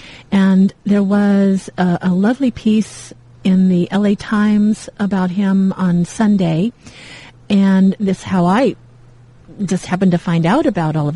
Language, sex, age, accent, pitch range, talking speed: English, female, 40-59, American, 170-205 Hz, 145 wpm